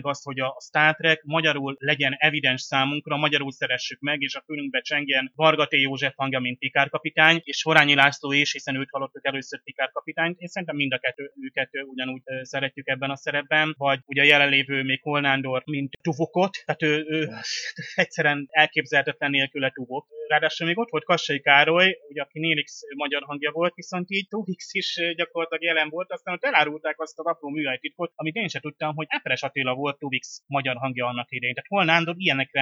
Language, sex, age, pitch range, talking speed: Hungarian, male, 30-49, 135-160 Hz, 170 wpm